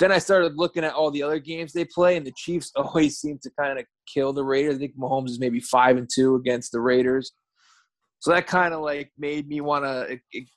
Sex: male